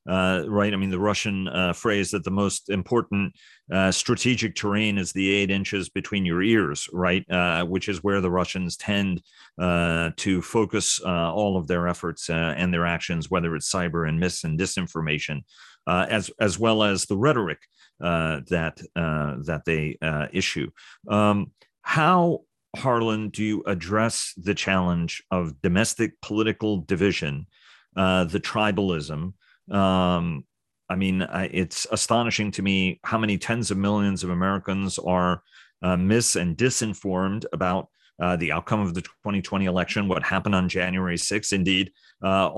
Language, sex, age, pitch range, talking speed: English, male, 40-59, 90-105 Hz, 160 wpm